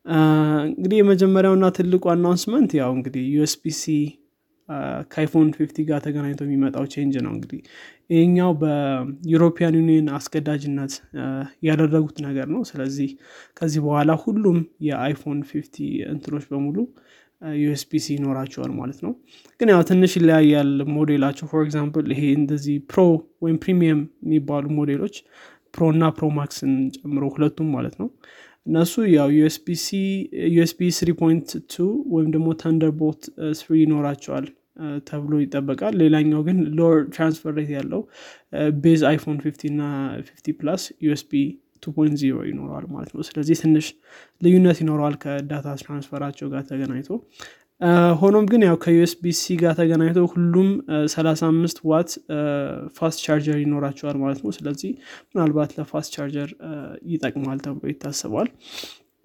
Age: 20-39